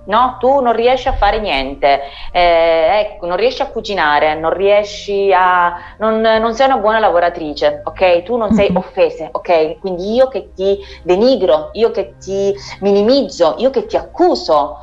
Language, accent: Italian, native